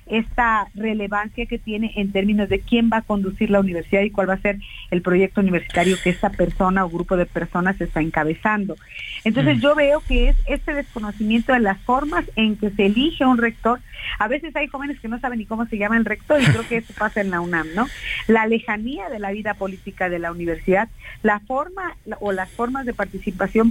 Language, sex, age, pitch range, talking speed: Spanish, female, 40-59, 190-230 Hz, 215 wpm